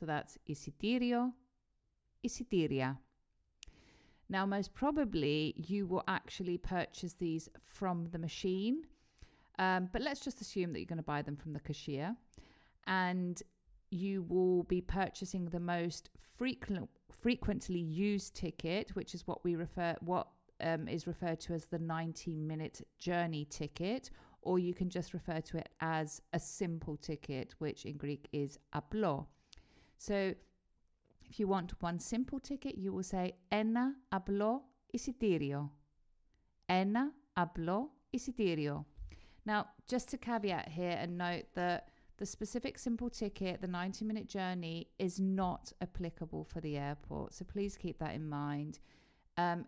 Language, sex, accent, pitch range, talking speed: Greek, female, British, 160-205 Hz, 140 wpm